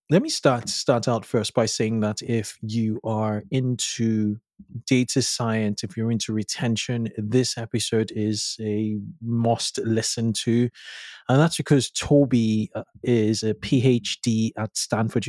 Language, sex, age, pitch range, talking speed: English, male, 20-39, 110-120 Hz, 135 wpm